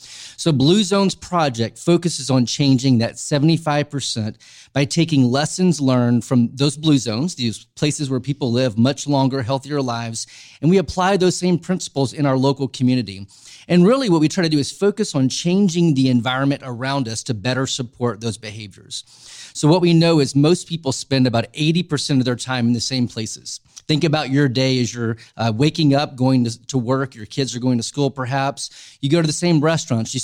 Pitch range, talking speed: 125-155 Hz, 200 wpm